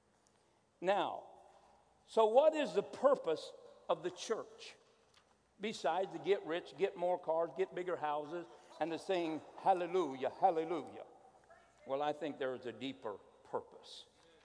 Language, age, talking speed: English, 60-79, 135 wpm